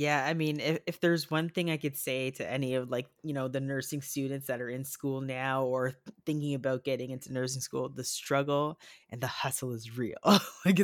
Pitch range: 130-155 Hz